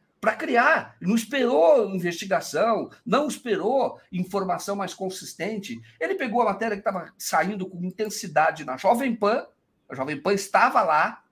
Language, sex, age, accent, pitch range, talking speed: Portuguese, male, 50-69, Brazilian, 180-245 Hz, 145 wpm